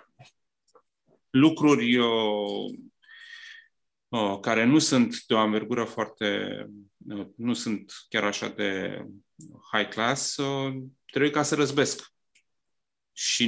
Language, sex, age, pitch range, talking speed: Romanian, male, 30-49, 120-180 Hz, 90 wpm